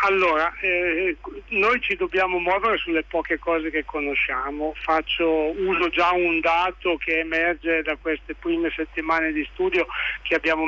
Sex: male